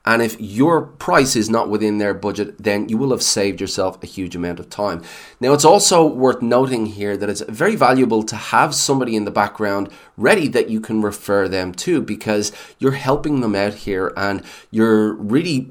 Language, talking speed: English, 200 wpm